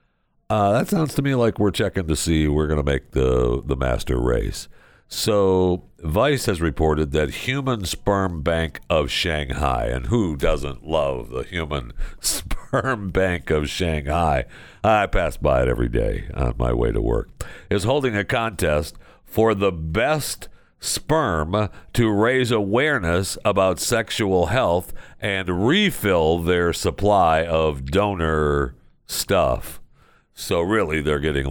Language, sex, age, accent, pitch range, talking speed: English, male, 60-79, American, 80-105 Hz, 140 wpm